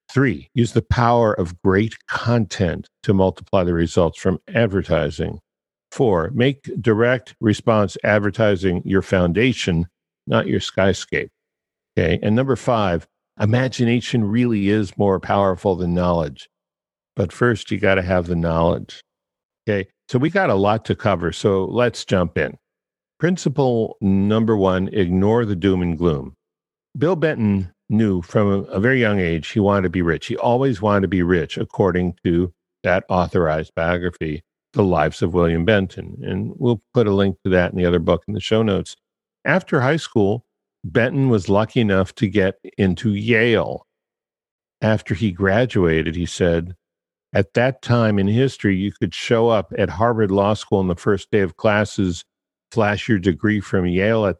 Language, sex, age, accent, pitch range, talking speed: English, male, 50-69, American, 90-115 Hz, 160 wpm